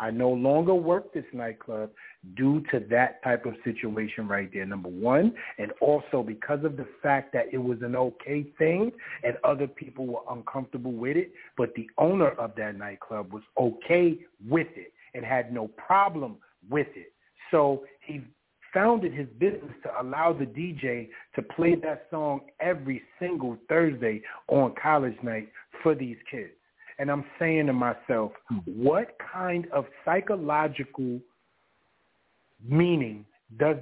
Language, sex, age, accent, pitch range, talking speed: English, male, 40-59, American, 120-165 Hz, 150 wpm